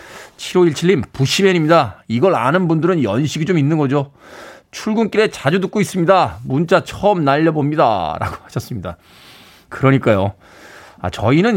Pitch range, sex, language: 115-185 Hz, male, Korean